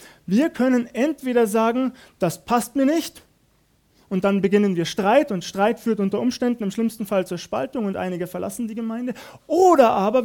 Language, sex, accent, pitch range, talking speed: German, male, German, 220-270 Hz, 175 wpm